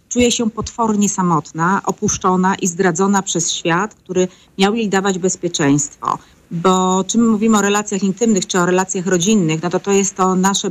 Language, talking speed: Polish, 175 wpm